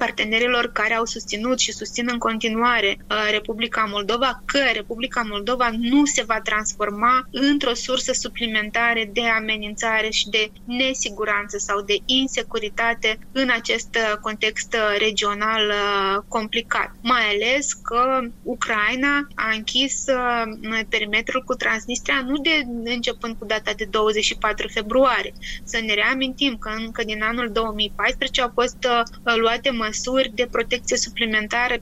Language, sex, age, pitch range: Romanian, female, 20-39, 215-245 Hz